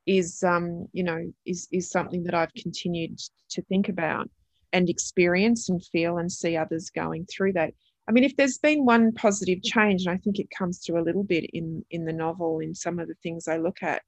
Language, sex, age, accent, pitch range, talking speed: English, female, 30-49, Australian, 160-185 Hz, 220 wpm